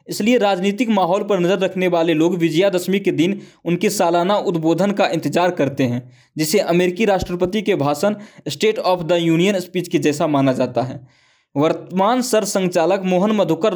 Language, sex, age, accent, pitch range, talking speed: English, male, 20-39, Indian, 160-195 Hz, 170 wpm